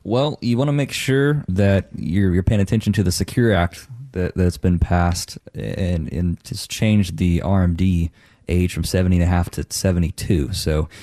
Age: 20-39